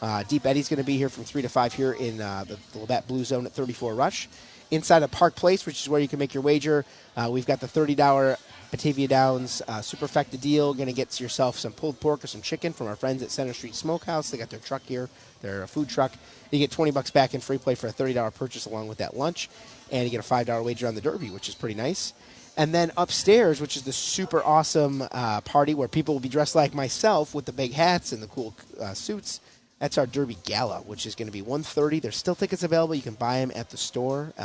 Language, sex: English, male